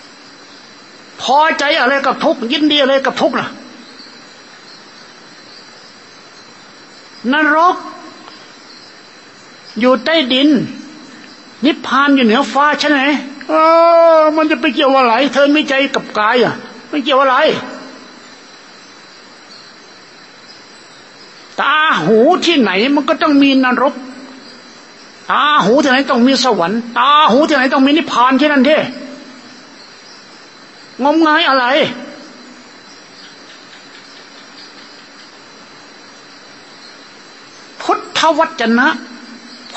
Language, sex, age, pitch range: Thai, male, 60-79, 255-310 Hz